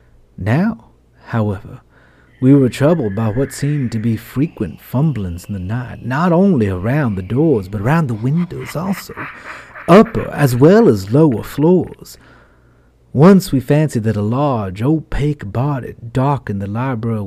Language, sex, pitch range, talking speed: English, male, 105-135 Hz, 145 wpm